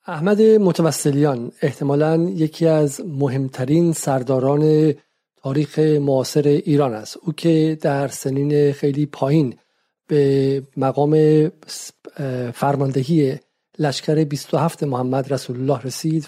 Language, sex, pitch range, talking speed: Persian, male, 140-165 Hz, 95 wpm